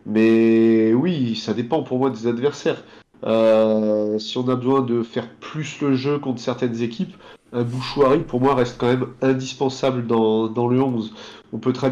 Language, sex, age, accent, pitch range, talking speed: French, male, 30-49, French, 115-135 Hz, 180 wpm